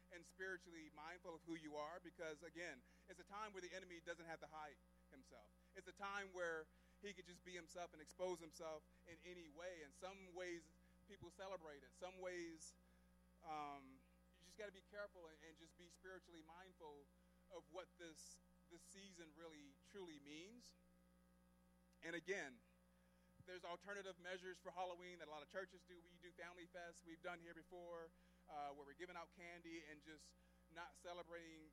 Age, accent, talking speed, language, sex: 30-49, American, 180 wpm, English, male